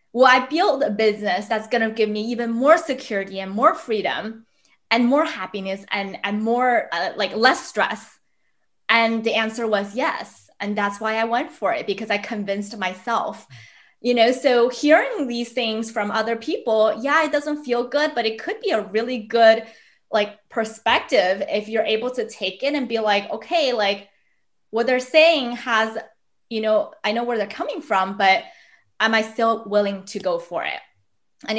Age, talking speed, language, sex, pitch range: 20-39, 185 wpm, English, female, 195-235 Hz